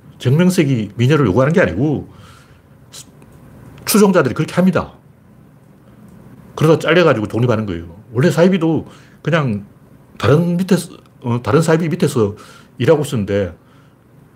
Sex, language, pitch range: male, Korean, 120-165 Hz